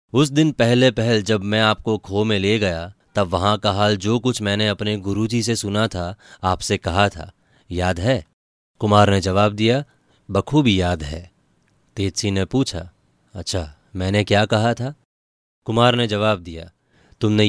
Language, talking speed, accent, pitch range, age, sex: Hindi, 165 wpm, native, 95-110 Hz, 20-39, male